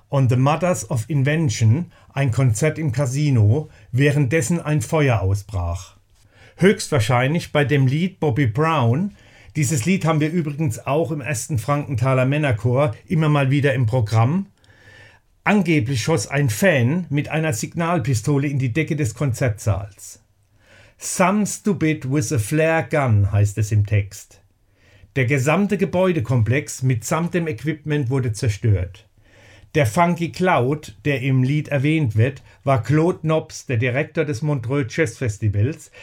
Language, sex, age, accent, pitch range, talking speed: German, male, 50-69, German, 110-155 Hz, 135 wpm